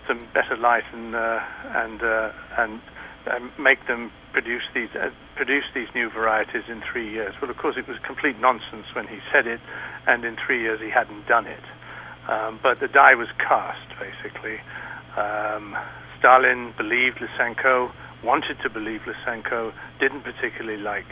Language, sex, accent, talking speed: English, male, British, 160 wpm